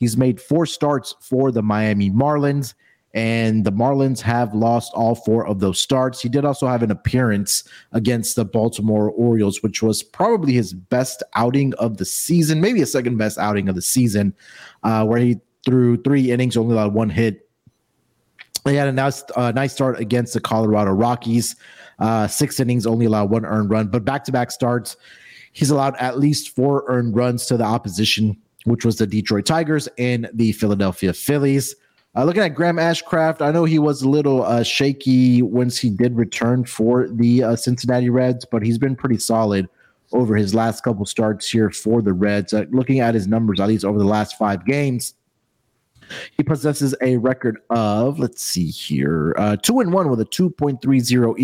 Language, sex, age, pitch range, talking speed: English, male, 30-49, 110-135 Hz, 185 wpm